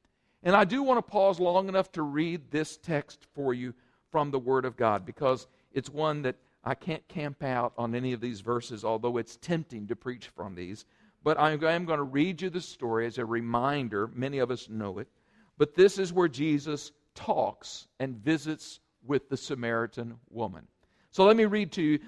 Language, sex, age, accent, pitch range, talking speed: English, male, 50-69, American, 130-210 Hz, 200 wpm